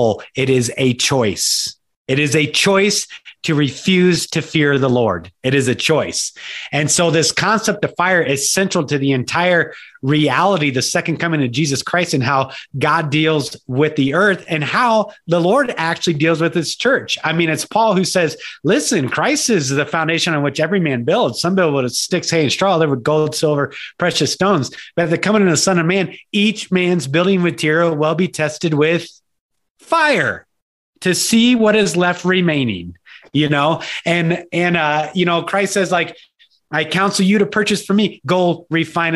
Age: 30-49